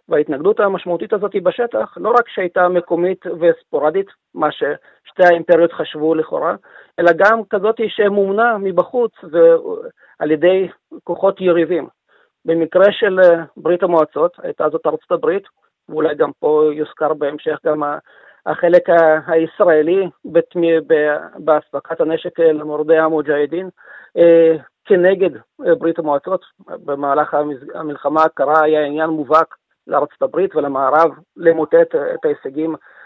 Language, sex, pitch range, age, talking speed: Hebrew, male, 160-190 Hz, 40-59, 105 wpm